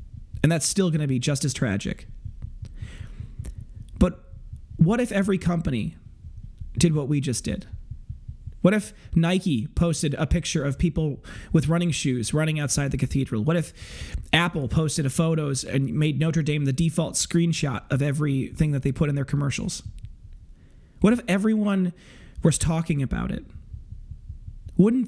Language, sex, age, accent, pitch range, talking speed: English, male, 30-49, American, 140-175 Hz, 150 wpm